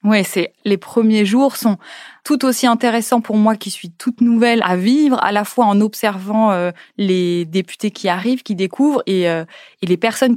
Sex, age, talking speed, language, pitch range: female, 20-39, 190 wpm, French, 190-240 Hz